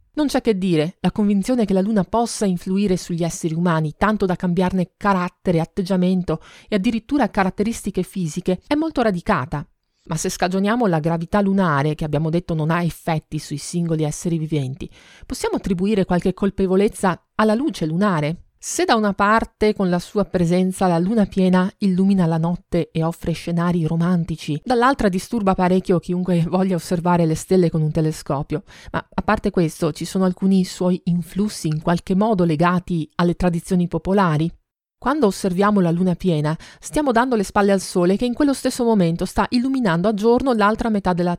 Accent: native